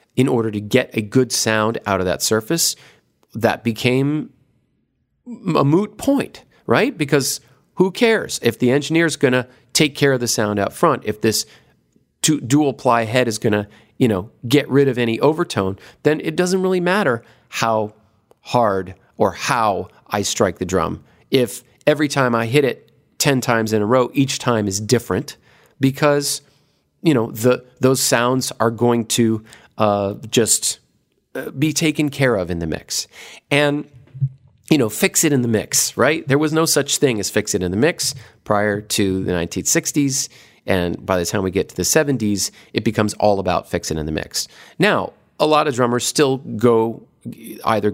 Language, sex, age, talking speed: English, male, 40-59, 180 wpm